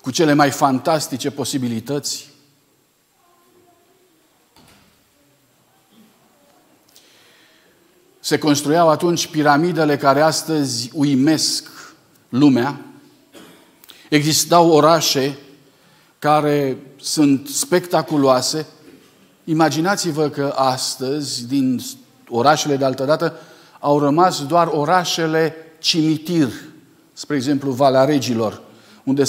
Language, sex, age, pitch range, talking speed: Romanian, male, 50-69, 135-160 Hz, 70 wpm